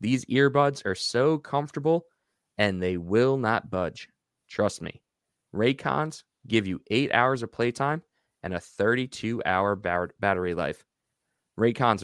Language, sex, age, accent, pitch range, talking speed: English, male, 20-39, American, 95-125 Hz, 125 wpm